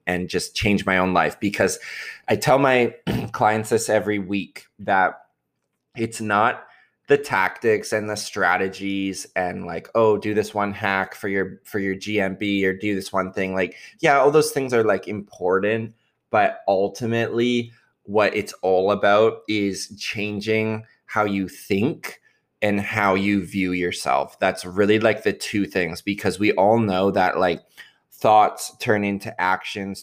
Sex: male